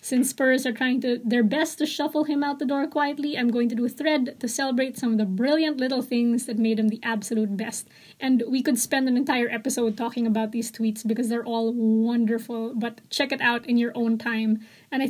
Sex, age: female, 20-39